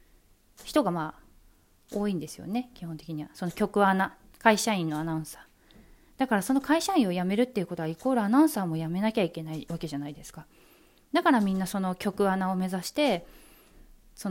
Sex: female